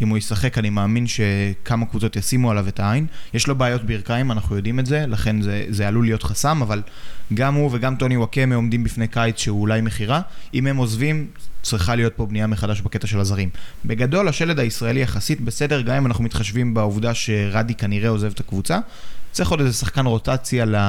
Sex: male